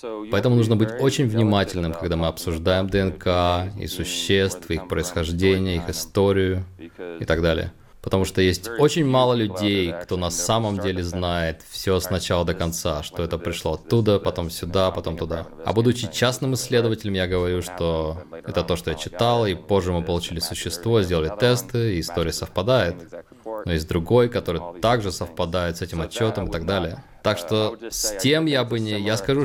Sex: male